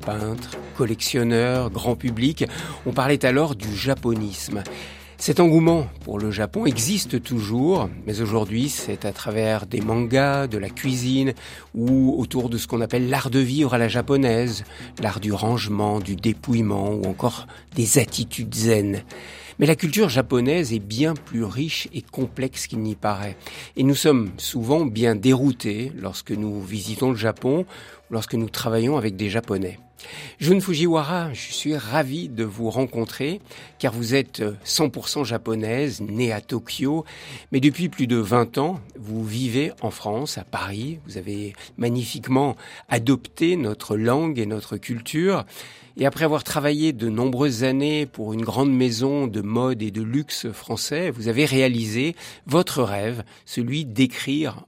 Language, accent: French, French